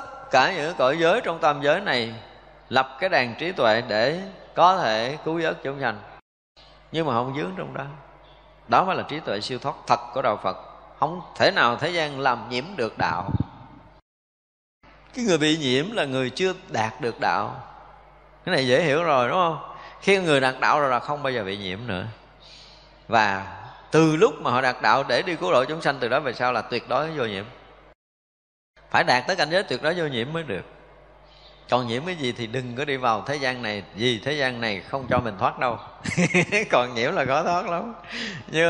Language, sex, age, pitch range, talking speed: Vietnamese, male, 20-39, 125-175 Hz, 210 wpm